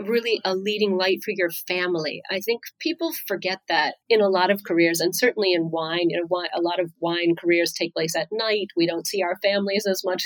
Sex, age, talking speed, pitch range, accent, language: female, 40-59, 220 wpm, 175-210 Hz, American, English